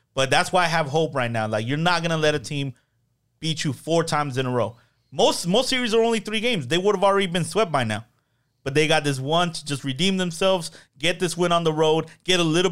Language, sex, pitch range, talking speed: English, male, 130-160 Hz, 260 wpm